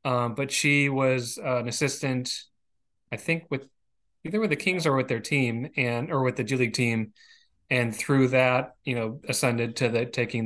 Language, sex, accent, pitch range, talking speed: English, male, American, 120-140 Hz, 195 wpm